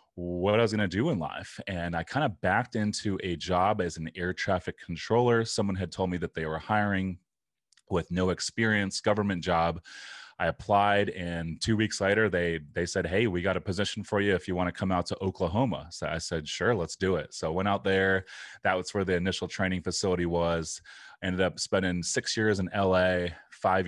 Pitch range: 85-95 Hz